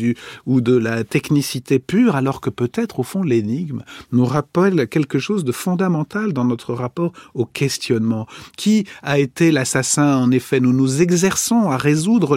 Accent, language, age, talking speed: French, French, 40-59, 160 wpm